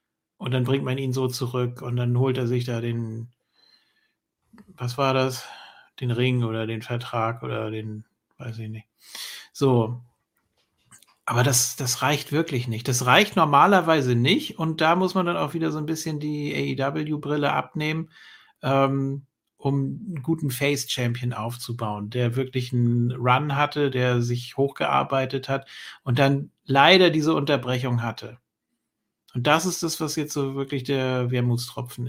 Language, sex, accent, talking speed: German, male, German, 155 wpm